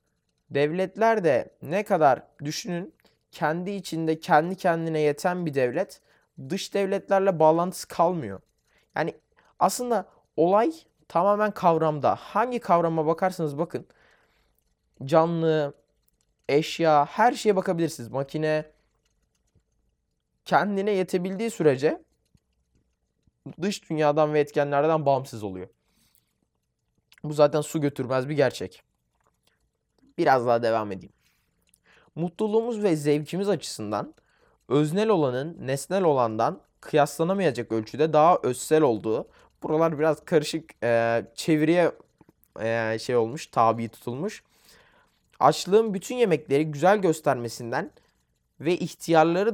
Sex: male